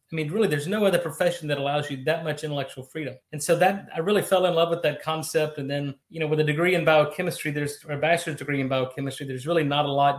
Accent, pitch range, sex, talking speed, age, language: American, 135-155 Hz, male, 270 wpm, 30-49, English